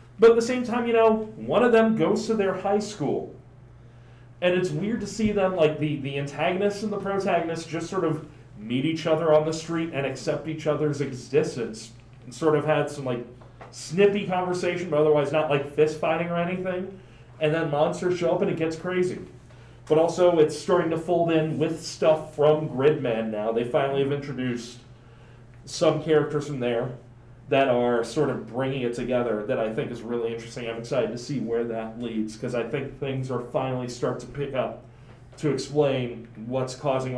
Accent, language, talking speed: American, English, 195 wpm